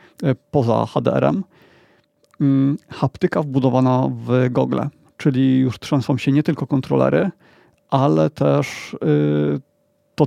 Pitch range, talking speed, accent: 125-150 Hz, 95 wpm, native